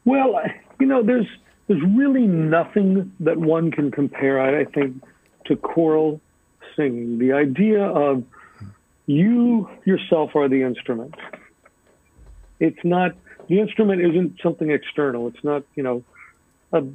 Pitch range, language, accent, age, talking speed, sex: 130-170 Hz, English, American, 50-69, 130 wpm, male